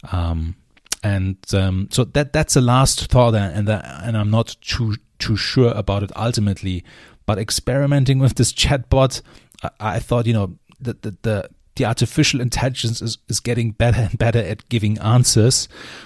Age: 30-49